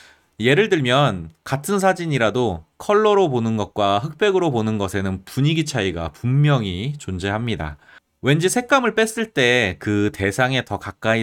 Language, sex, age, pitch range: Korean, male, 30-49, 95-150 Hz